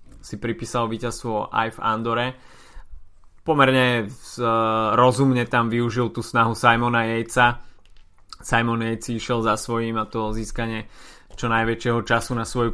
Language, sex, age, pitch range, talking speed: Slovak, male, 20-39, 115-130 Hz, 125 wpm